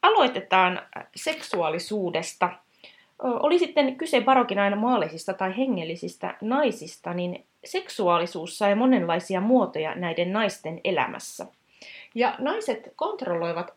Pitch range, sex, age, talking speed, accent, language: 190-265 Hz, female, 30-49, 90 wpm, native, Finnish